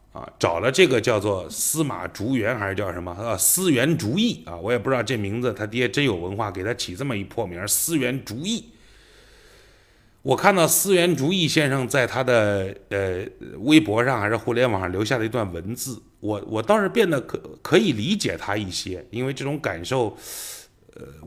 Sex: male